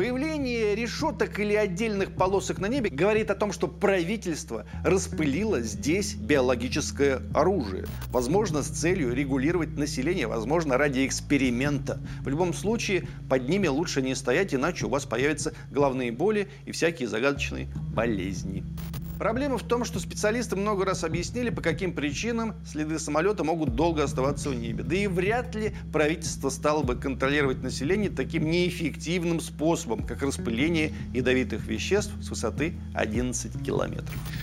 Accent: native